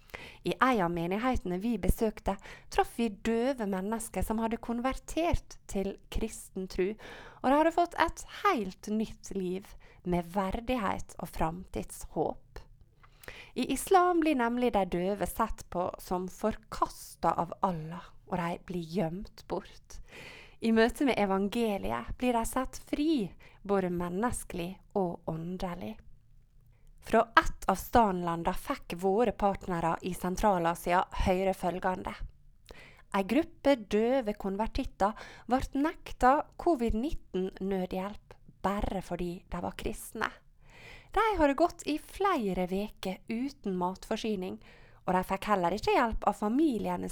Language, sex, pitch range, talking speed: English, female, 185-245 Hz, 115 wpm